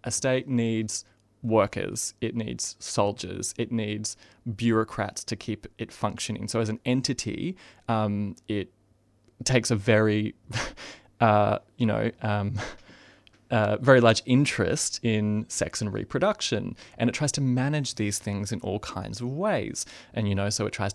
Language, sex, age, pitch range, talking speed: English, male, 20-39, 100-115 Hz, 150 wpm